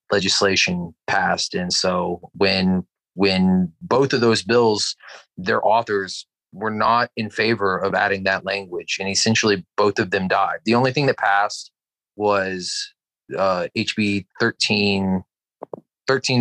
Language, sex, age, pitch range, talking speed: English, male, 30-49, 95-115 Hz, 130 wpm